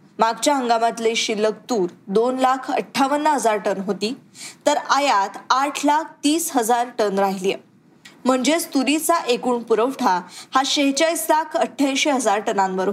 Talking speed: 95 wpm